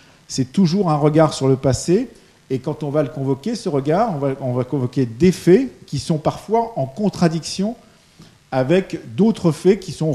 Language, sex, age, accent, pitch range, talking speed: French, male, 50-69, French, 130-175 Hz, 185 wpm